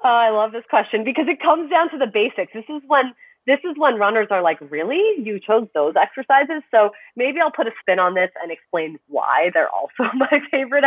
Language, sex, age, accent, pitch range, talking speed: English, female, 30-49, American, 155-220 Hz, 220 wpm